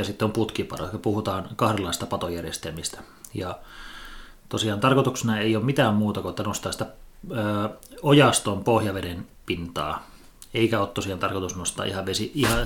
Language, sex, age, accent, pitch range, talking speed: Finnish, male, 30-49, native, 95-115 Hz, 130 wpm